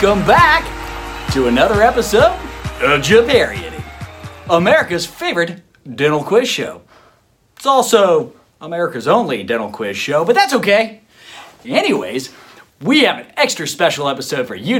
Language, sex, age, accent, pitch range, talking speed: English, male, 30-49, American, 155-250 Hz, 125 wpm